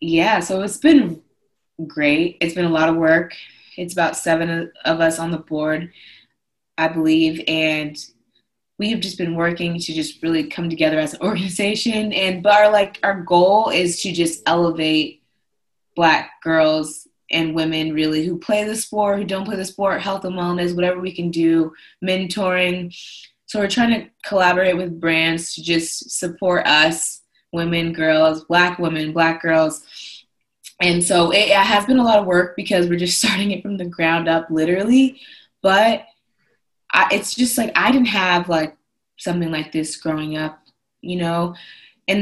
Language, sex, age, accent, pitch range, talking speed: English, female, 20-39, American, 165-195 Hz, 170 wpm